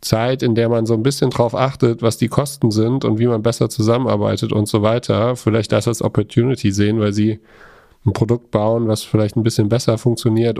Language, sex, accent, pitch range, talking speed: German, male, German, 105-120 Hz, 210 wpm